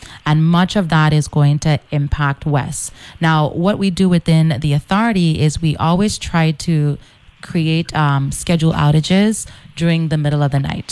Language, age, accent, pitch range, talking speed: English, 30-49, American, 145-170 Hz, 170 wpm